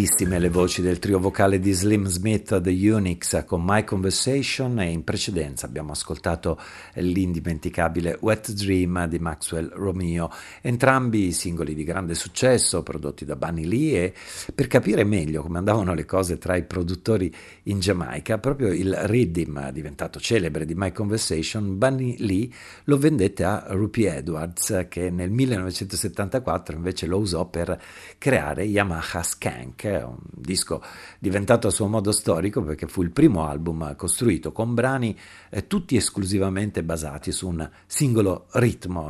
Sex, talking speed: male, 145 wpm